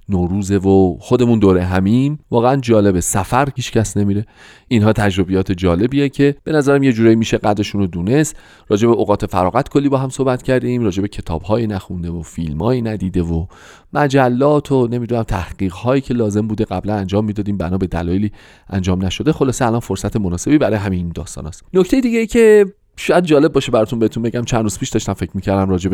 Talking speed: 175 wpm